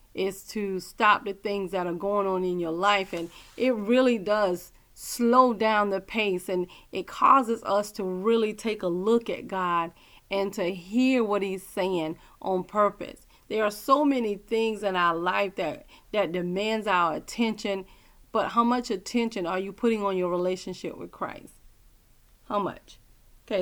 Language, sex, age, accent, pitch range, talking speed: English, female, 30-49, American, 180-220 Hz, 170 wpm